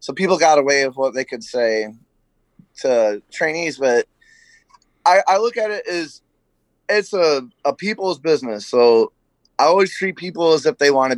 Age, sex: 20-39, male